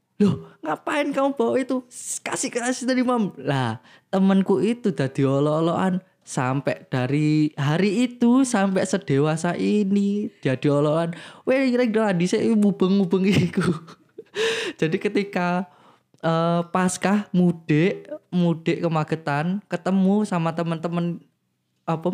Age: 20-39